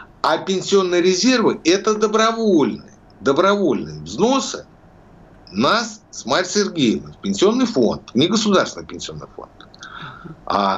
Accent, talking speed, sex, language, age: native, 105 wpm, male, Russian, 60-79